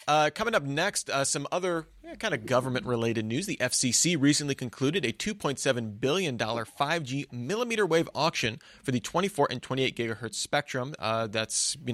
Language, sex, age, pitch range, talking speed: English, male, 30-49, 115-150 Hz, 165 wpm